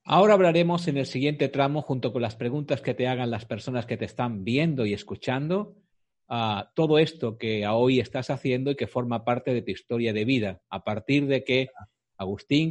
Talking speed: 200 wpm